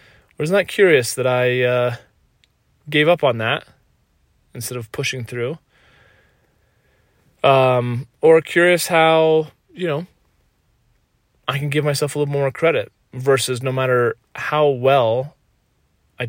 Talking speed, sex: 130 wpm, male